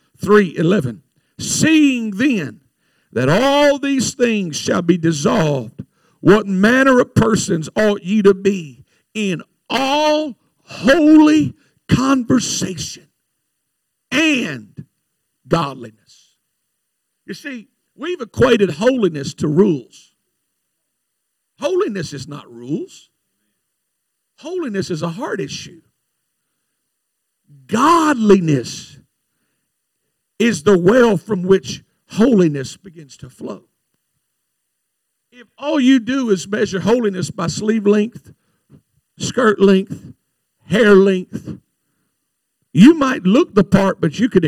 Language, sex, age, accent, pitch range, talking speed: English, male, 50-69, American, 160-255 Hz, 100 wpm